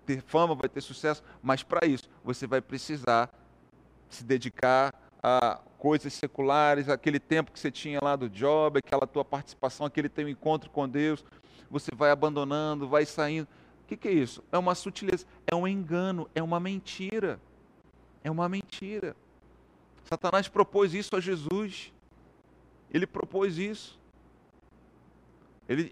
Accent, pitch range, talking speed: Brazilian, 135-190 Hz, 145 wpm